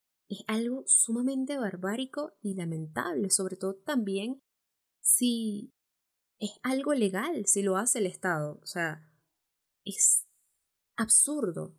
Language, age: Spanish, 10-29